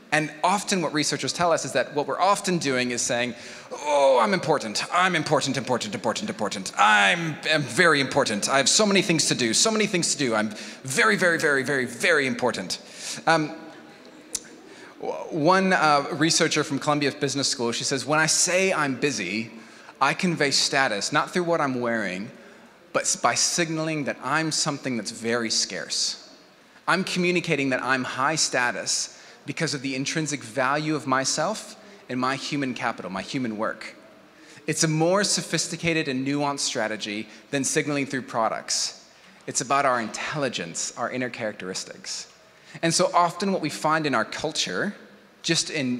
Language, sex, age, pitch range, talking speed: English, male, 30-49, 125-165 Hz, 165 wpm